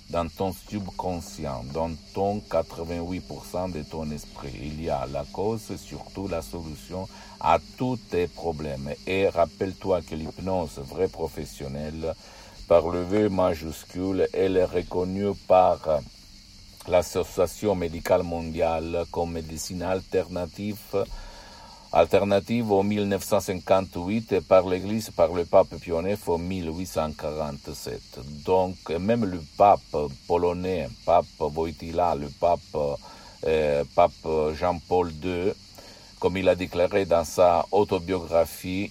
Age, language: 60-79, Italian